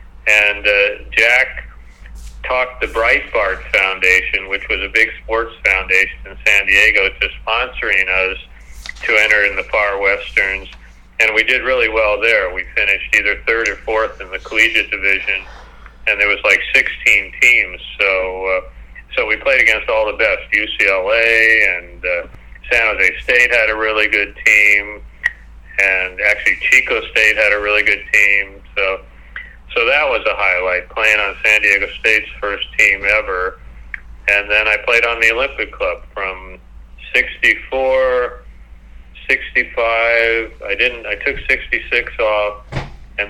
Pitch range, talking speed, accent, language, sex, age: 95-115 Hz, 150 wpm, American, English, male, 40-59